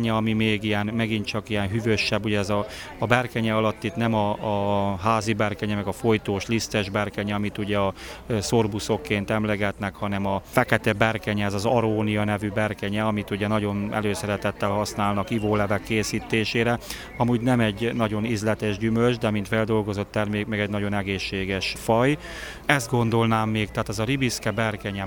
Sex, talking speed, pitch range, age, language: male, 165 wpm, 100-115 Hz, 30-49, Hungarian